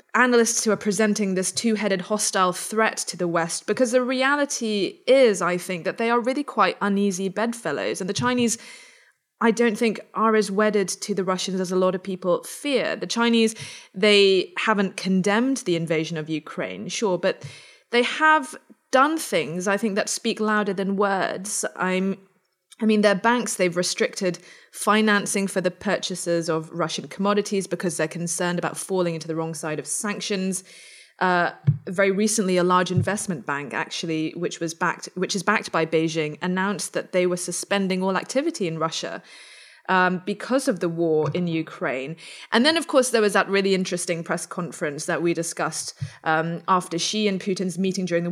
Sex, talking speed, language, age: female, 175 wpm, English, 20-39